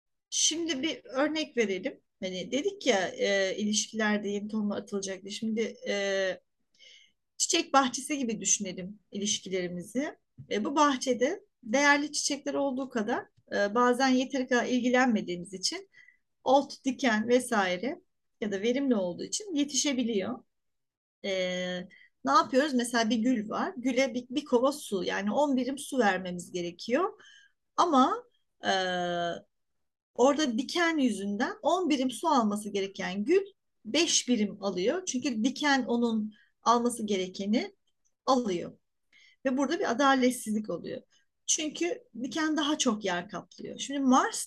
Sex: female